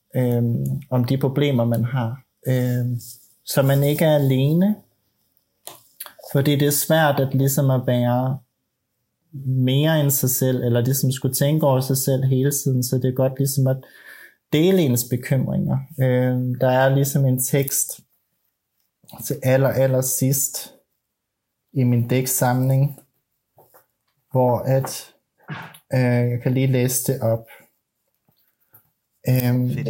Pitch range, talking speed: 130-160 Hz, 130 wpm